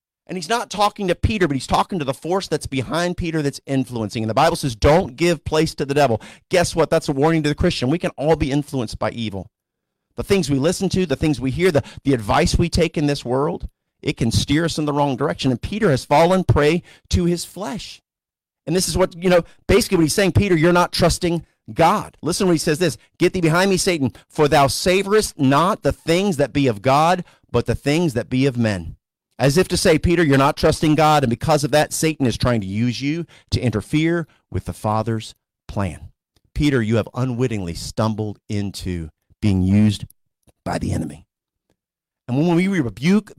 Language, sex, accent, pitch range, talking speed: English, male, American, 125-175 Hz, 215 wpm